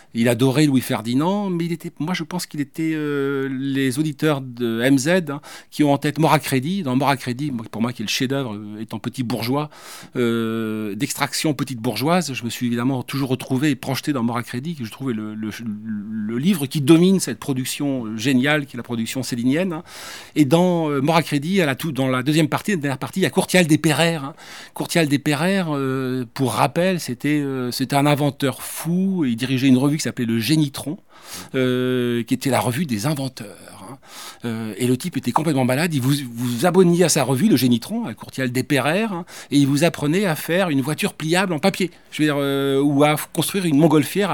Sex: male